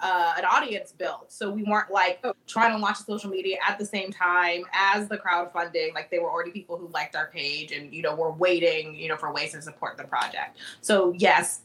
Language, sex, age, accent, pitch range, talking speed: English, female, 20-39, American, 175-220 Hz, 225 wpm